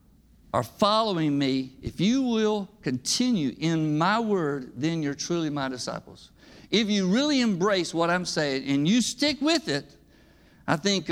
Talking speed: 155 wpm